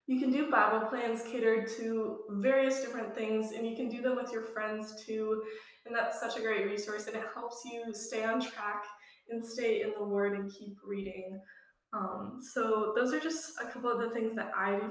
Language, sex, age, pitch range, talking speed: English, female, 10-29, 205-235 Hz, 215 wpm